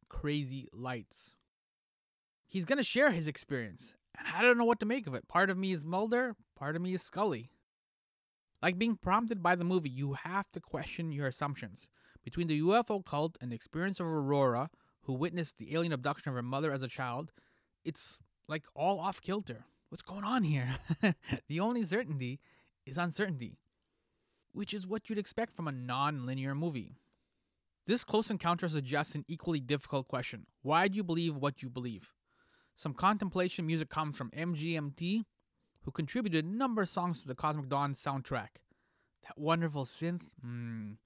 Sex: male